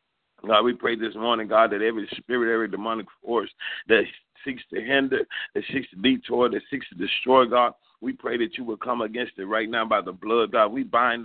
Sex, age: male, 40-59